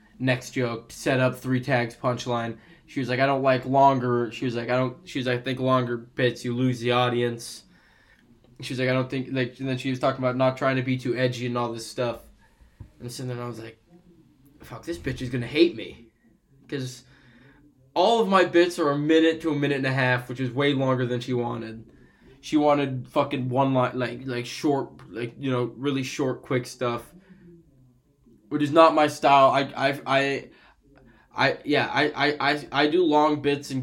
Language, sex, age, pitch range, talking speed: English, male, 20-39, 125-140 Hz, 210 wpm